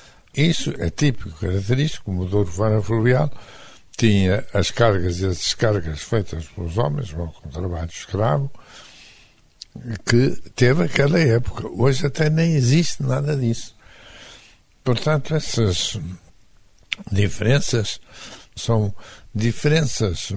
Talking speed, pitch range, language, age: 105 wpm, 105-130 Hz, Portuguese, 60-79